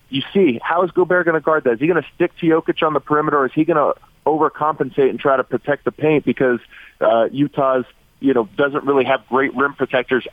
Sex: male